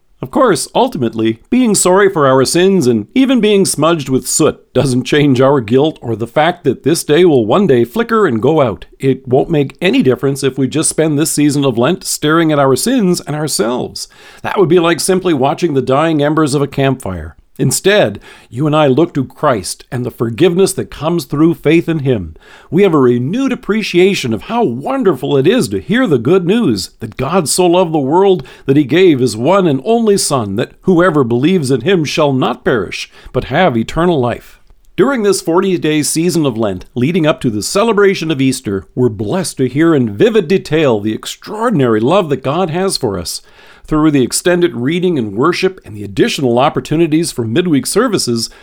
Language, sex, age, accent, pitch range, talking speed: English, male, 50-69, American, 125-175 Hz, 195 wpm